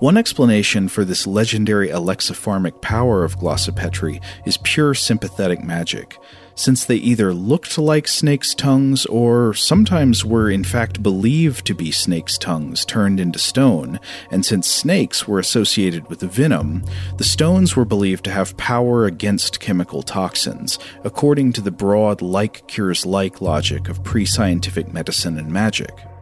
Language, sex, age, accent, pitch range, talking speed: English, male, 40-59, American, 90-120 Hz, 140 wpm